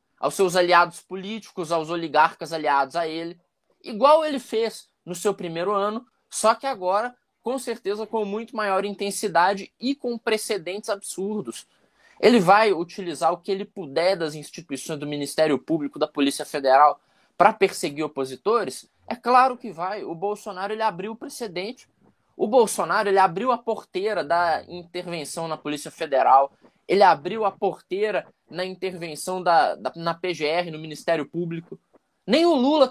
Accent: Brazilian